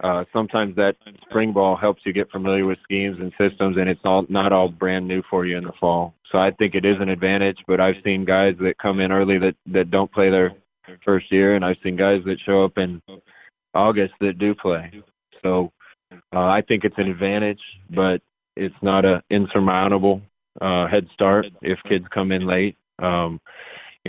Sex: male